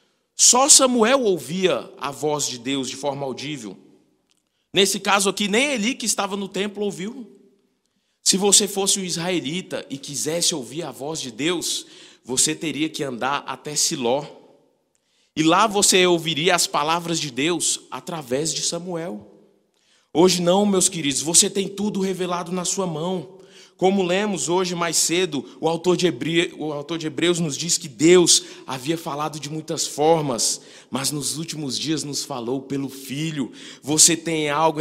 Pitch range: 155-195 Hz